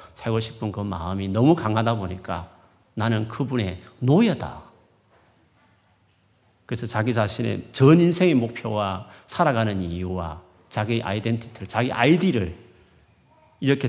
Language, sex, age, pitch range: Korean, male, 40-59, 95-130 Hz